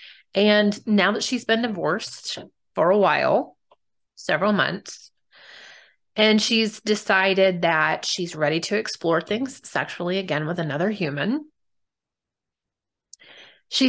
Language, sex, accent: English, female, American